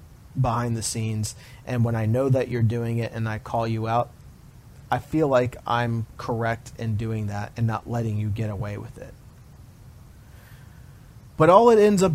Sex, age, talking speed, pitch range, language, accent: male, 30-49, 185 wpm, 115-140 Hz, English, American